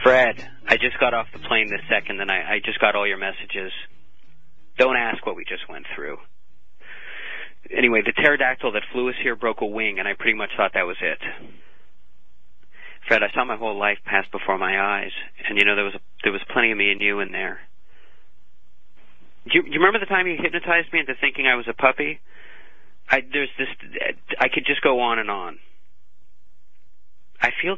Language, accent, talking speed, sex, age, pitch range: English, American, 205 wpm, male, 30-49, 100-140 Hz